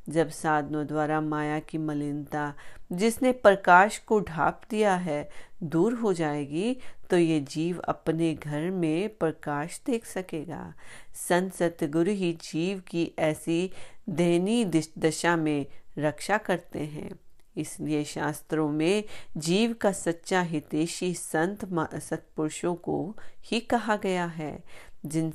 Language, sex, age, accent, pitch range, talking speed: Hindi, female, 40-59, native, 155-195 Hz, 90 wpm